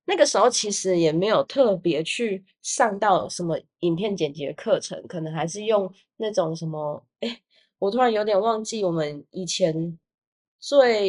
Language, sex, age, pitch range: Chinese, female, 20-39, 170-235 Hz